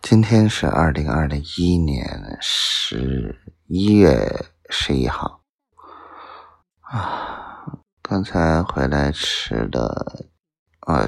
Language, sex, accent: Chinese, male, native